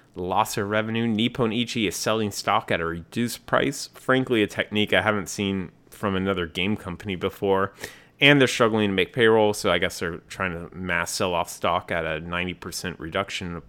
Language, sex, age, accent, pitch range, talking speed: English, male, 30-49, American, 90-115 Hz, 195 wpm